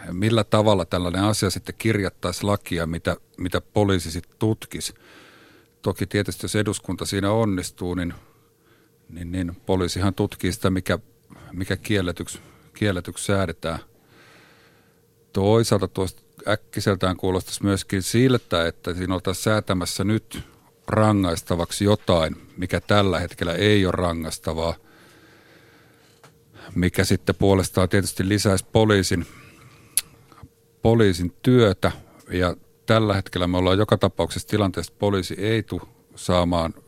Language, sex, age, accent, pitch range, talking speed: Finnish, male, 50-69, native, 90-110 Hz, 110 wpm